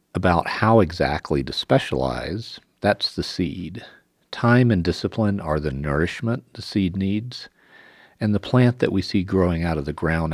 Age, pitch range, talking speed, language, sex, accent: 50-69, 80-105 Hz, 165 wpm, English, male, American